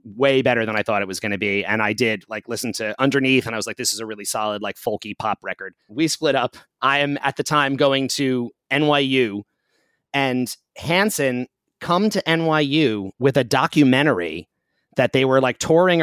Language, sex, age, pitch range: English, male, 30-49, 115-145 Hz